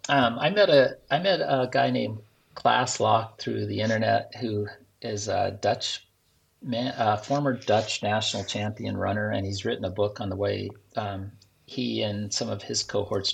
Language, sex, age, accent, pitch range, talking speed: English, male, 40-59, American, 100-115 Hz, 180 wpm